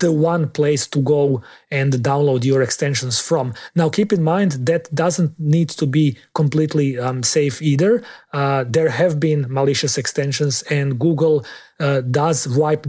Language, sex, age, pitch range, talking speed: English, male, 30-49, 130-155 Hz, 160 wpm